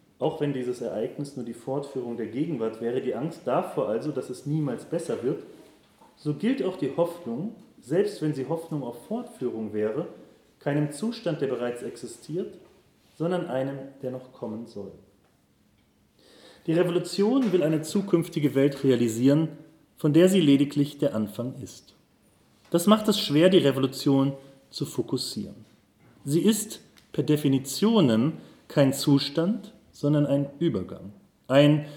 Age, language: 30-49, German